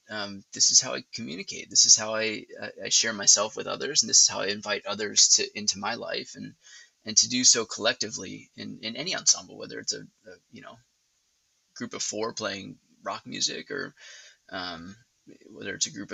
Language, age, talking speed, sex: English, 20-39, 205 wpm, male